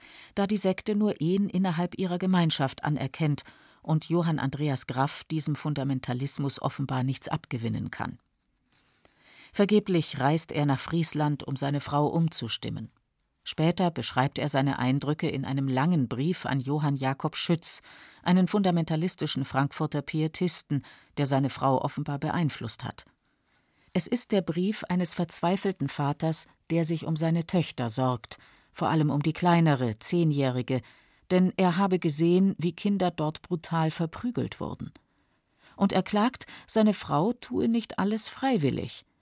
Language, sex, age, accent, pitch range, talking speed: German, female, 40-59, German, 135-180 Hz, 135 wpm